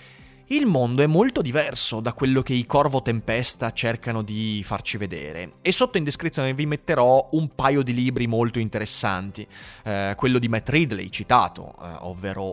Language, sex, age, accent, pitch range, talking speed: Italian, male, 30-49, native, 110-140 Hz, 170 wpm